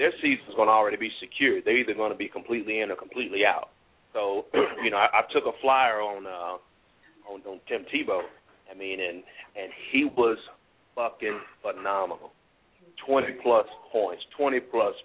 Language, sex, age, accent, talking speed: English, male, 40-59, American, 170 wpm